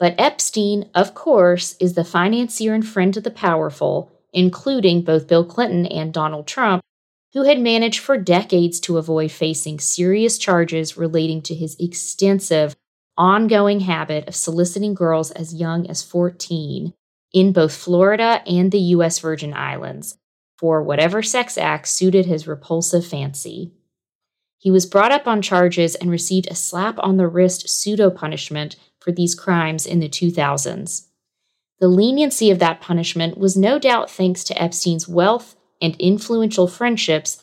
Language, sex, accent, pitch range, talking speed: English, female, American, 170-205 Hz, 145 wpm